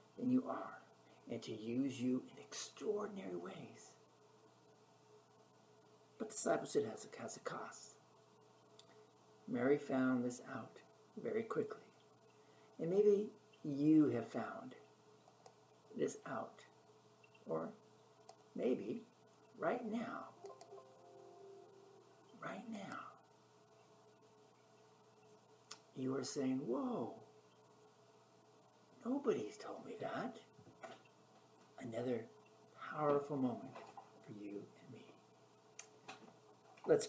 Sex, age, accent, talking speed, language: male, 60-79, American, 80 wpm, English